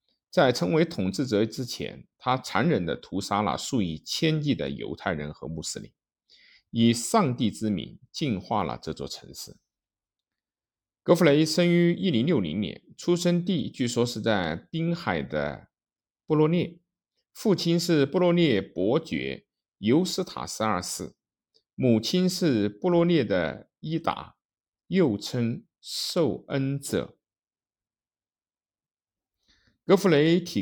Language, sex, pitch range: Chinese, male, 100-170 Hz